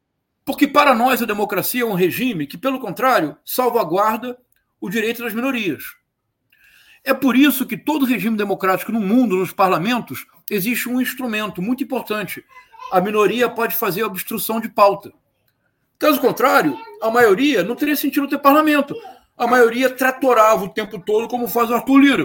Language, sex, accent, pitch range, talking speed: Portuguese, male, Brazilian, 215-275 Hz, 160 wpm